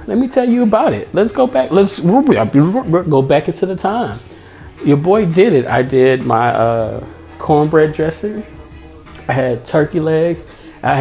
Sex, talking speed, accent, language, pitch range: male, 165 wpm, American, English, 125-160 Hz